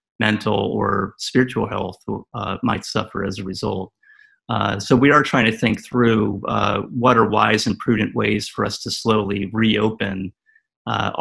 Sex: male